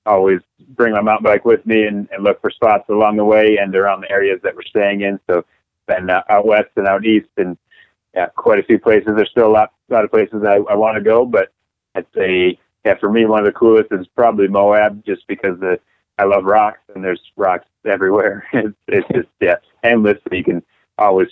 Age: 30-49